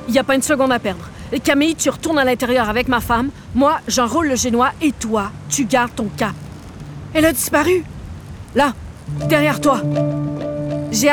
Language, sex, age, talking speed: French, female, 40-59, 180 wpm